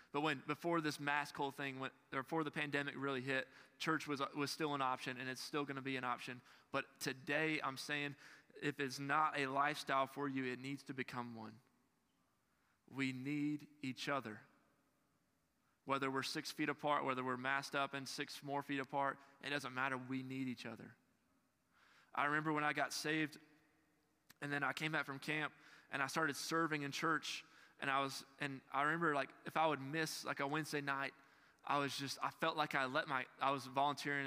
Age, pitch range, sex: 20-39, 130-145 Hz, male